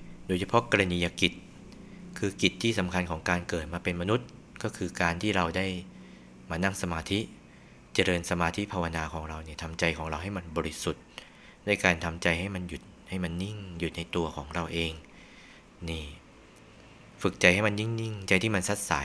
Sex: male